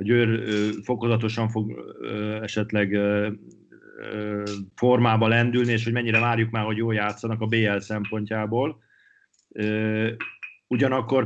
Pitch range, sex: 100-115 Hz, male